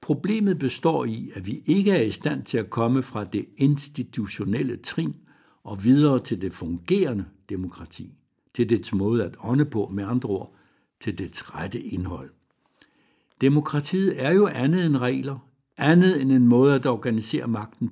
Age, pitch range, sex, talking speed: 60-79, 105-145 Hz, male, 160 wpm